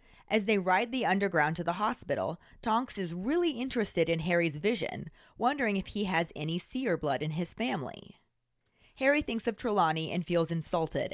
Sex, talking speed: female, 170 wpm